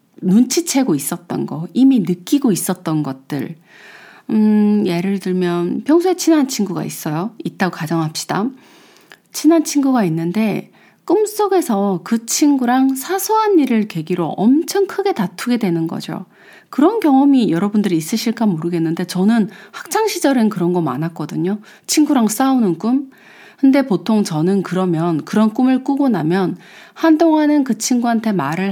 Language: Korean